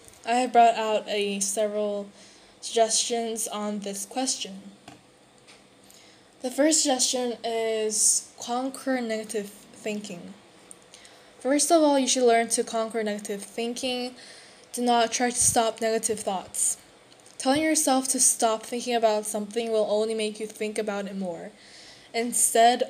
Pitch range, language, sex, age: 215-245 Hz, Korean, female, 10-29